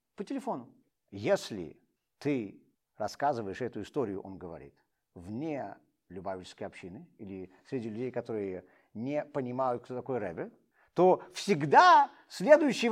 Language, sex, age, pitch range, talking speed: Russian, male, 50-69, 150-245 Hz, 110 wpm